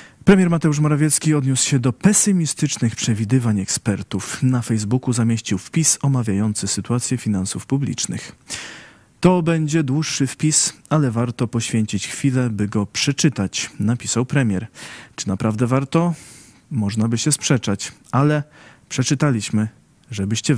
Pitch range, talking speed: 110-145 Hz, 115 wpm